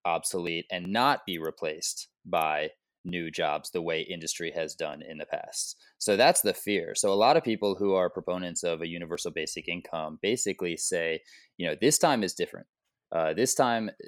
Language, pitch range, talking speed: English, 95-135 Hz, 190 wpm